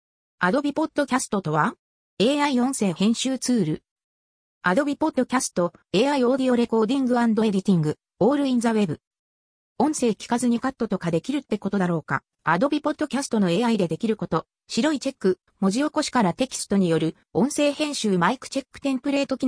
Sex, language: female, Japanese